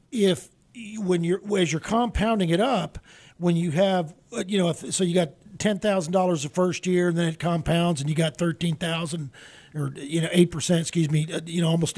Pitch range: 165-195 Hz